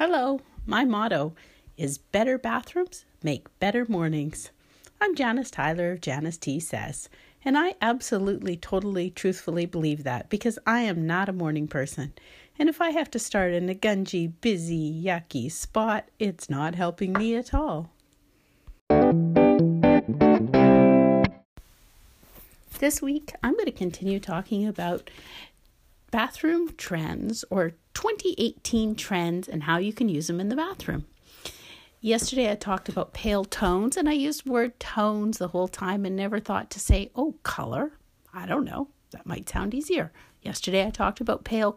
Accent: American